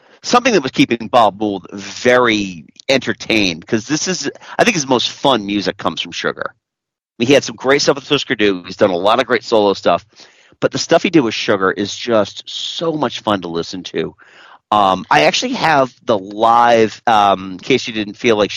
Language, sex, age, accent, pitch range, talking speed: English, male, 40-59, American, 105-145 Hz, 205 wpm